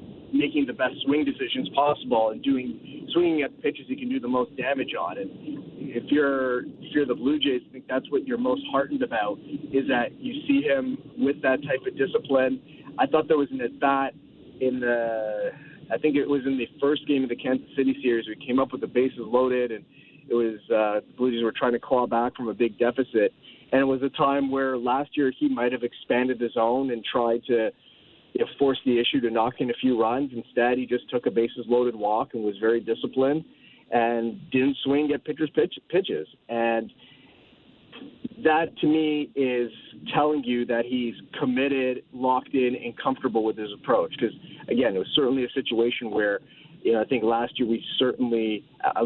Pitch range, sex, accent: 120-150 Hz, male, American